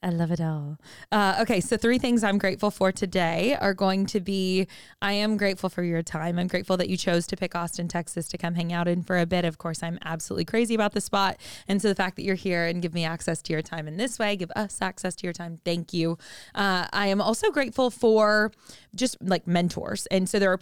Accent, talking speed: American, 250 wpm